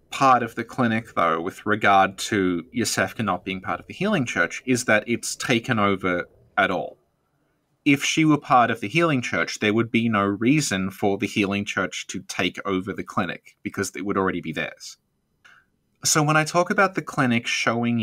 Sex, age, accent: male, 20-39, Australian